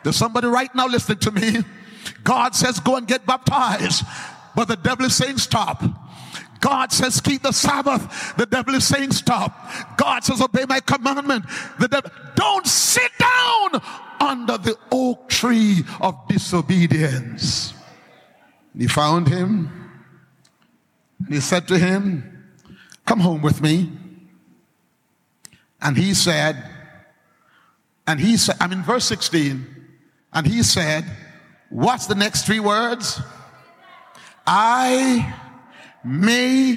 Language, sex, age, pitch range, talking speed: English, male, 50-69, 180-255 Hz, 125 wpm